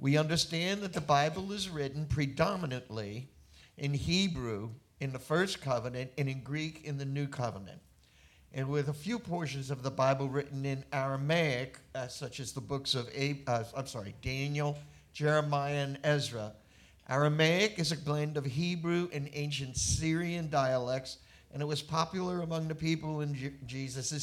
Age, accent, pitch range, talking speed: 50-69, American, 135-165 Hz, 155 wpm